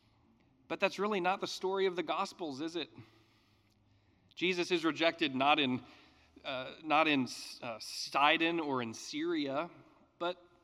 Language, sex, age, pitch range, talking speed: English, male, 40-59, 140-190 Hz, 140 wpm